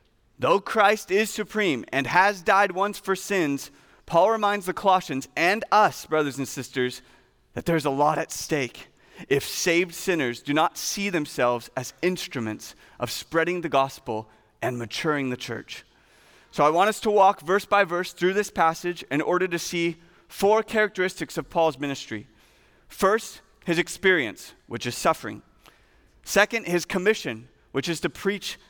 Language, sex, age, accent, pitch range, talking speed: English, male, 30-49, American, 130-180 Hz, 160 wpm